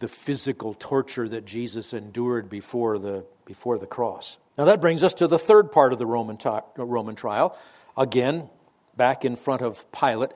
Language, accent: English, American